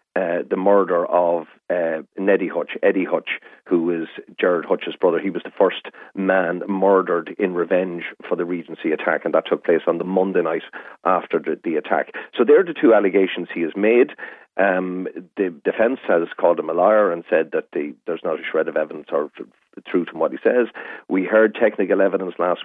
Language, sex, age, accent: English, male, 40-59, Irish